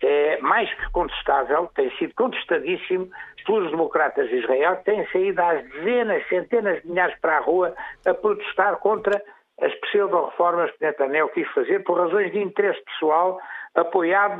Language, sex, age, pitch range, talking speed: Portuguese, male, 60-79, 195-315 Hz, 155 wpm